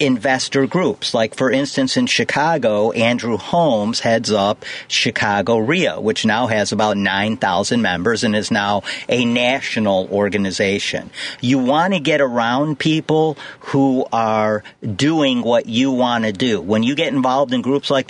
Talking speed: 155 wpm